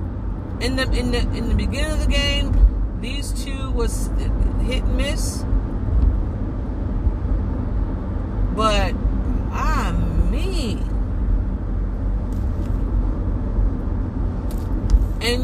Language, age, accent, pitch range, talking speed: English, 40-59, American, 85-95 Hz, 80 wpm